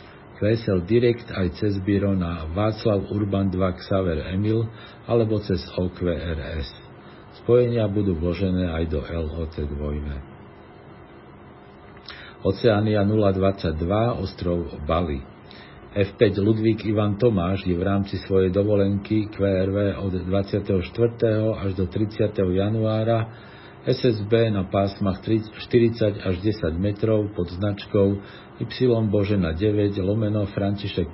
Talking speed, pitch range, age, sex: 105 wpm, 90-110 Hz, 50-69, male